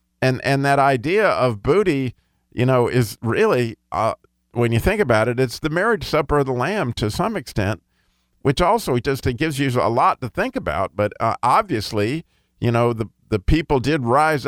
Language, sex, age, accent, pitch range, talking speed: English, male, 50-69, American, 115-150 Hz, 195 wpm